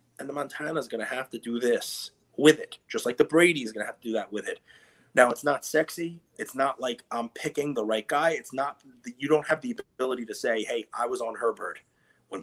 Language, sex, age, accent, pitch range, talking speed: English, male, 30-49, American, 115-165 Hz, 240 wpm